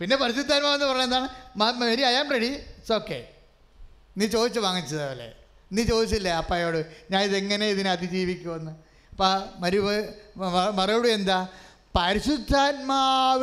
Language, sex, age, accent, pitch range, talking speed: English, male, 30-49, Indian, 225-280 Hz, 50 wpm